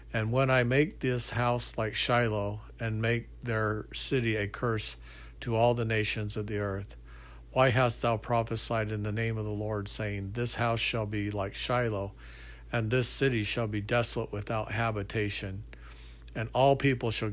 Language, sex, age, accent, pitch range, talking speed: English, male, 50-69, American, 100-120 Hz, 175 wpm